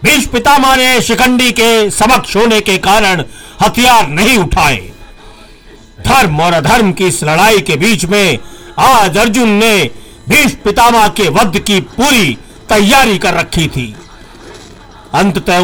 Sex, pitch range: male, 170-230 Hz